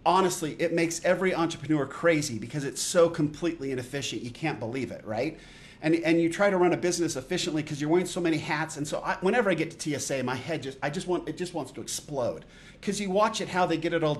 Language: English